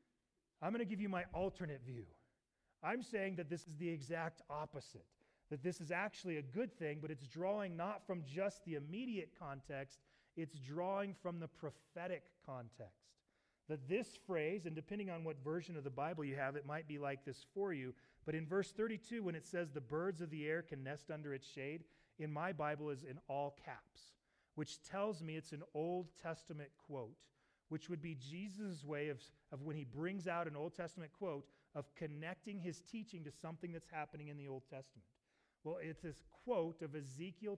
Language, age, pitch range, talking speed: English, 30-49, 145-180 Hz, 195 wpm